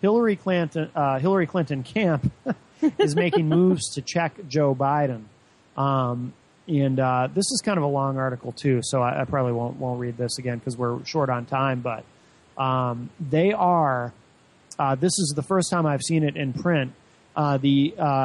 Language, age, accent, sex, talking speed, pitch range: English, 30-49, American, male, 185 wpm, 130-175 Hz